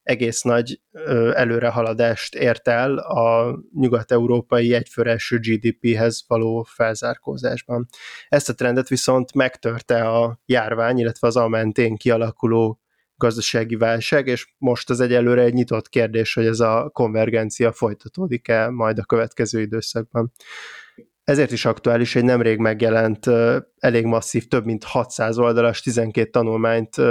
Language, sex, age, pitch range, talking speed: Hungarian, male, 20-39, 115-125 Hz, 120 wpm